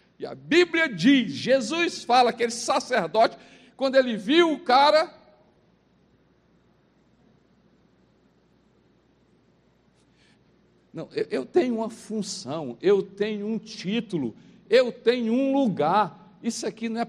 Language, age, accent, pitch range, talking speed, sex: Portuguese, 60-79, Brazilian, 205-300 Hz, 110 wpm, male